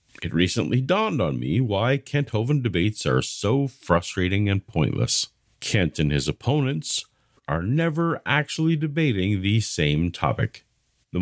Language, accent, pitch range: English, American, 95-140 Hz